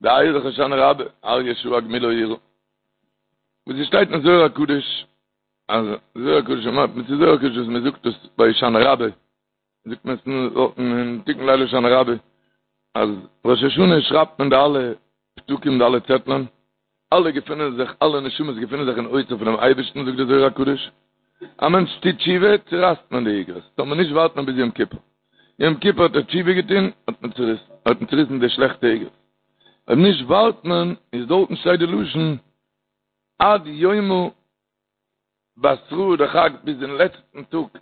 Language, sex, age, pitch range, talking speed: Hebrew, male, 60-79, 125-170 Hz, 125 wpm